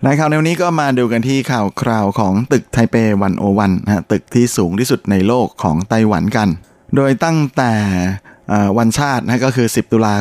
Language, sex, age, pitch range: Thai, male, 20-39, 105-125 Hz